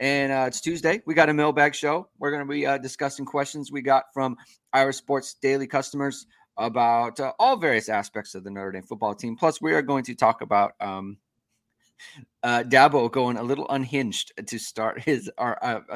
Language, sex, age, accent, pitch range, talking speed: English, male, 30-49, American, 125-160 Hz, 200 wpm